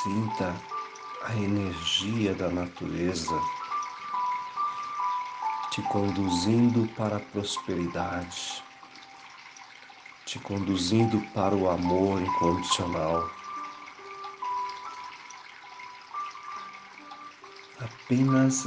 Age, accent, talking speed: 50-69, Brazilian, 55 wpm